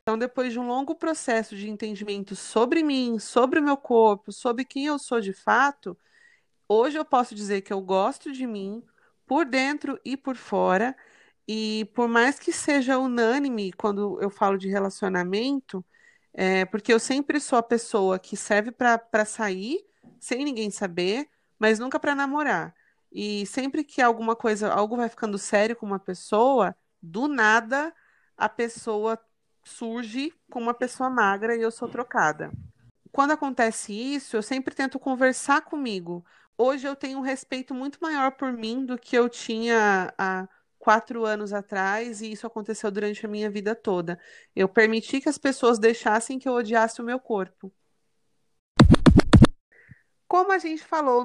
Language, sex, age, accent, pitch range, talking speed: Portuguese, female, 30-49, Brazilian, 210-270 Hz, 160 wpm